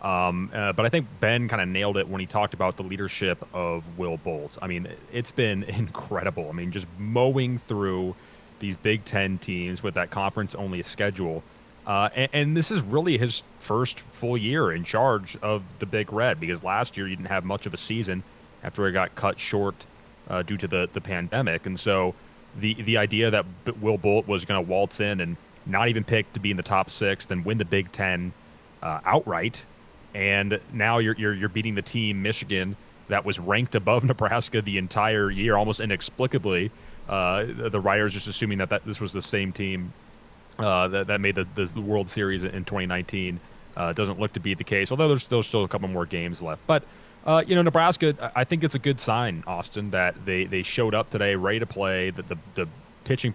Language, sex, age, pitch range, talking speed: English, male, 30-49, 95-110 Hz, 215 wpm